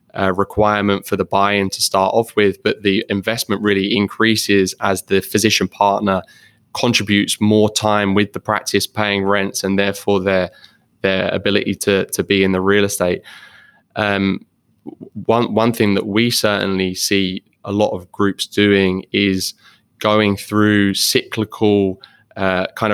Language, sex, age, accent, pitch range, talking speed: English, male, 20-39, British, 95-105 Hz, 150 wpm